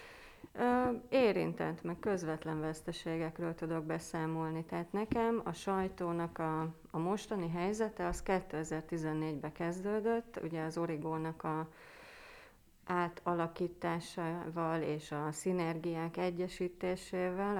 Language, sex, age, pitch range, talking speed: Hungarian, female, 30-49, 160-190 Hz, 85 wpm